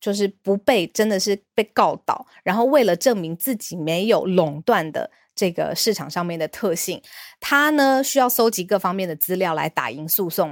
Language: Chinese